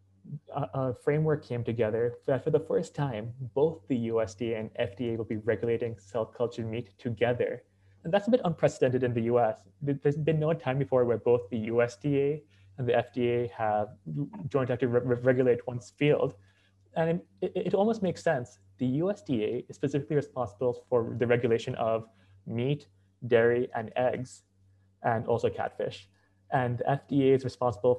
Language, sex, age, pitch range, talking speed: English, male, 20-39, 110-135 Hz, 160 wpm